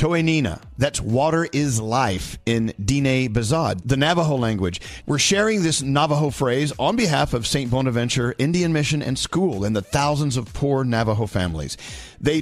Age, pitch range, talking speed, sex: 50-69, 110-150 Hz, 160 wpm, male